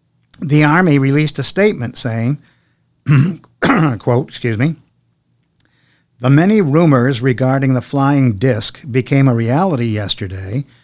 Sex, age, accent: male, 50-69, American